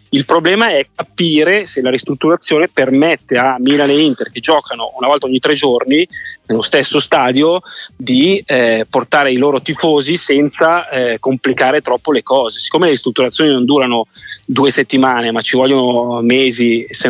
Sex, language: male, Italian